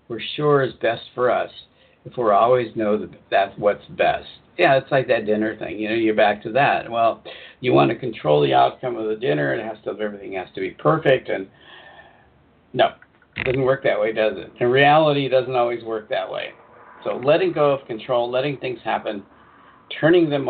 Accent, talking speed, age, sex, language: American, 210 wpm, 50-69, male, English